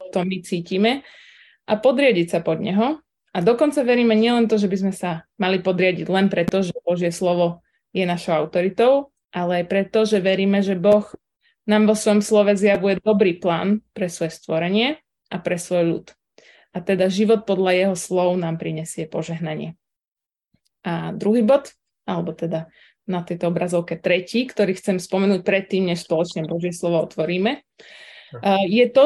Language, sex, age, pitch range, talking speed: Slovak, female, 20-39, 175-220 Hz, 160 wpm